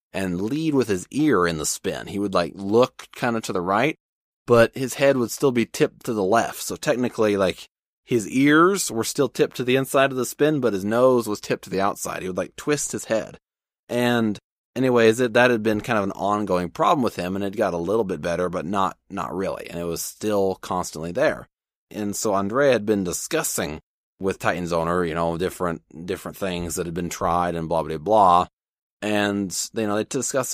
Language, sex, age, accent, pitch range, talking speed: English, male, 30-49, American, 90-110 Hz, 220 wpm